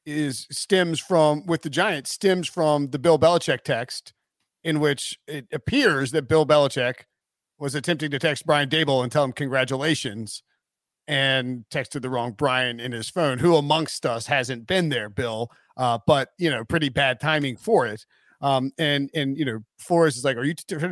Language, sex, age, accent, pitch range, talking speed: English, male, 40-59, American, 140-180 Hz, 185 wpm